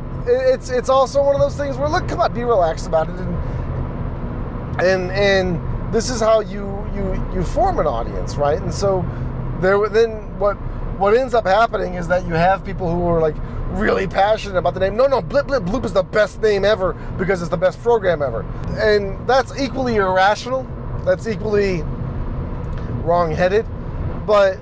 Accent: American